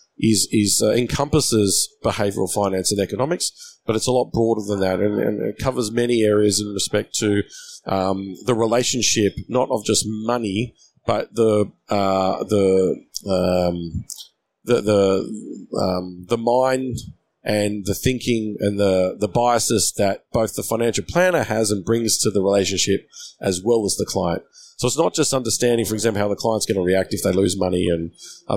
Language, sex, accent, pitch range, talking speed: English, male, Australian, 95-115 Hz, 175 wpm